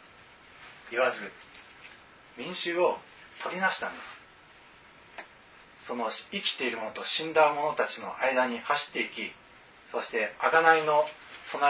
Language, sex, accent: Japanese, male, native